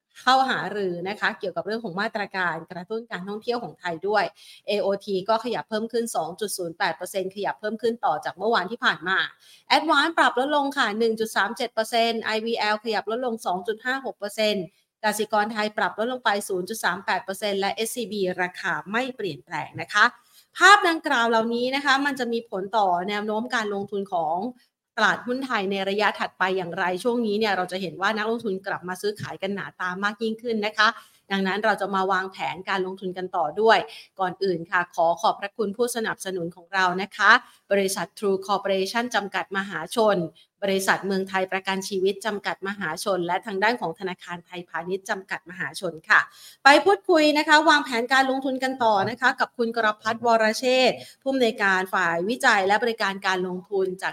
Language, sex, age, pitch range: Thai, female, 30-49, 190-230 Hz